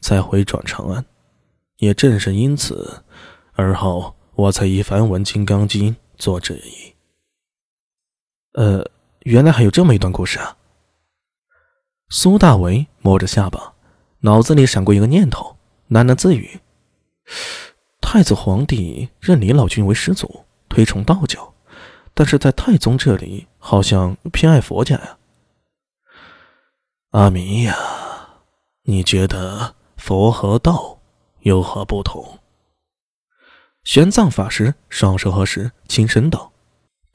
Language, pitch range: Chinese, 100-155 Hz